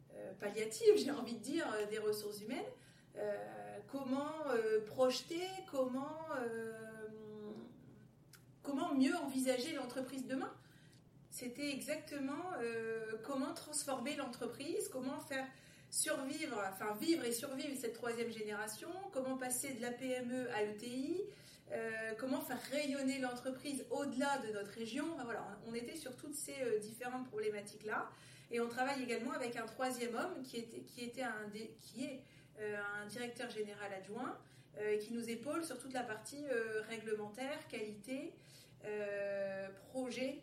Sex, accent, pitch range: female, French, 215-275 Hz